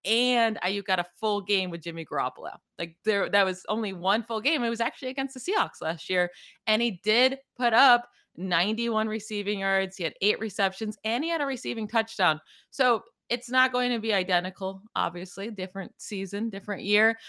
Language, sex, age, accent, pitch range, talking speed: English, female, 20-39, American, 185-230 Hz, 190 wpm